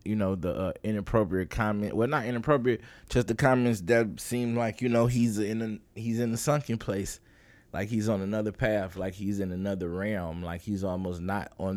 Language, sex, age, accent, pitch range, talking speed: English, male, 20-39, American, 95-115 Hz, 200 wpm